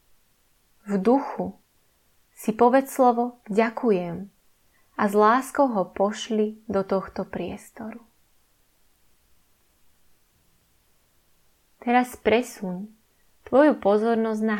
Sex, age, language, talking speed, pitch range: female, 20-39, Slovak, 80 wpm, 195-230 Hz